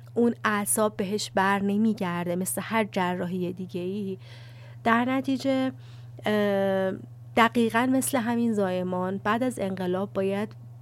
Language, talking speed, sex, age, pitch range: Persian, 110 wpm, female, 30-49, 160-220 Hz